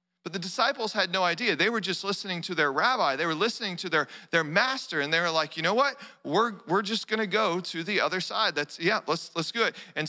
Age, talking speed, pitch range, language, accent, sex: 40-59, 255 wpm, 165-215 Hz, English, American, male